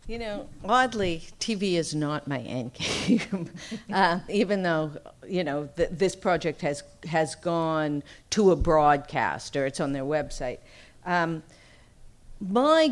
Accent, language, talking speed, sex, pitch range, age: American, English, 135 wpm, female, 150-190 Hz, 50-69